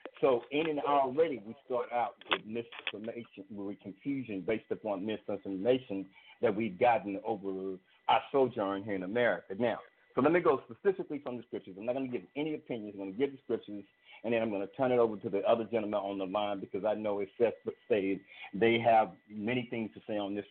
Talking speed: 215 wpm